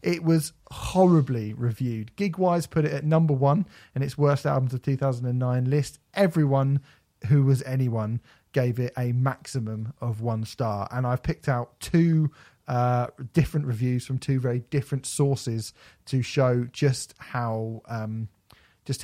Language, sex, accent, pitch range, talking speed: English, male, British, 120-145 Hz, 150 wpm